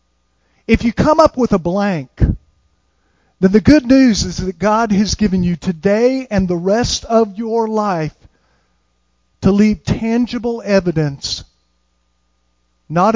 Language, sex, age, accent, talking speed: English, male, 50-69, American, 130 wpm